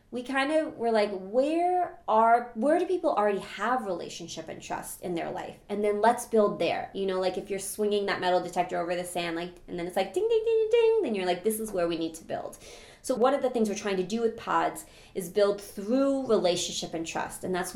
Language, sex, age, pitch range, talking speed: English, female, 30-49, 175-230 Hz, 245 wpm